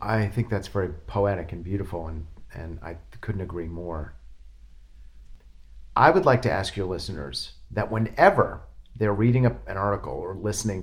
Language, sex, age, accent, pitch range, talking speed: English, male, 50-69, American, 80-125 Hz, 155 wpm